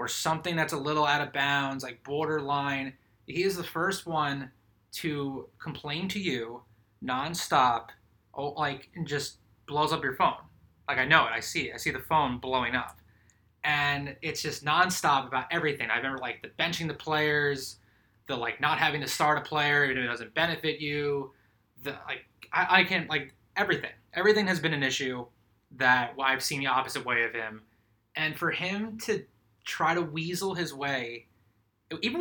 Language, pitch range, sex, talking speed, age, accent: English, 125-160 Hz, male, 185 wpm, 20-39, American